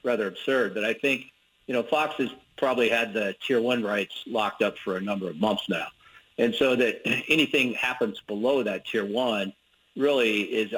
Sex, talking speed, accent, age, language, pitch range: male, 190 wpm, American, 50-69, English, 100-115 Hz